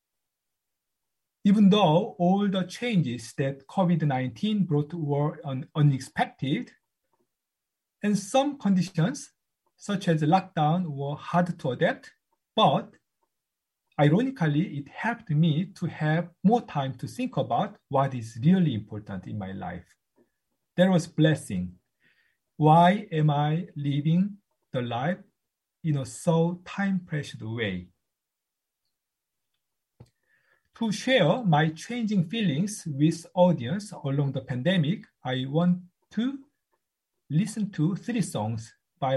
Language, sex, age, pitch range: Korean, male, 40-59, 145-200 Hz